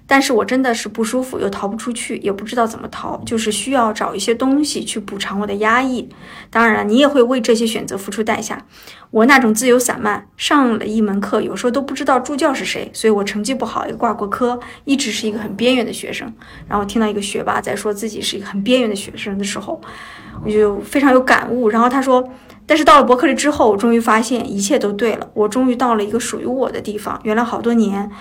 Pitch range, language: 210-250 Hz, Chinese